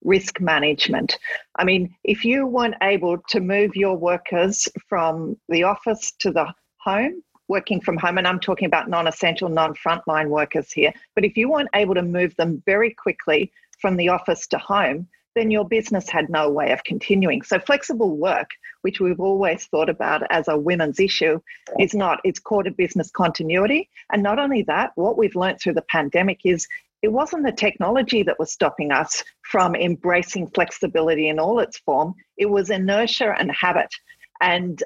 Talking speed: 175 wpm